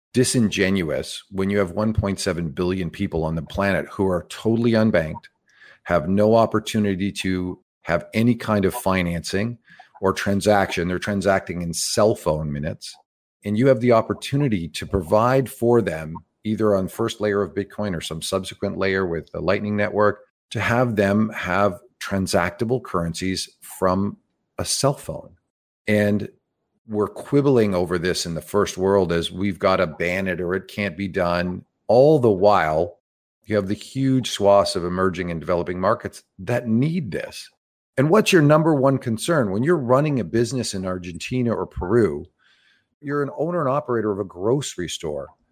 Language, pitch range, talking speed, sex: English, 95-120 Hz, 165 wpm, male